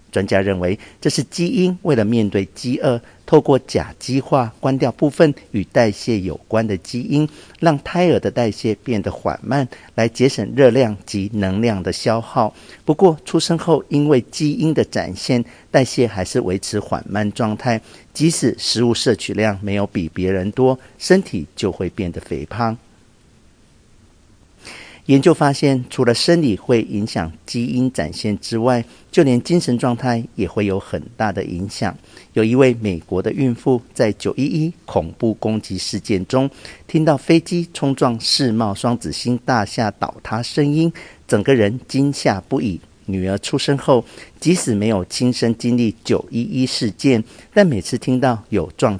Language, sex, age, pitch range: Chinese, male, 50-69, 100-135 Hz